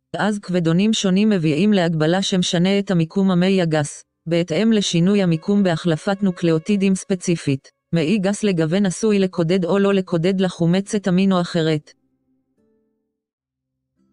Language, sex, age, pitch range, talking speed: English, female, 30-49, 165-195 Hz, 115 wpm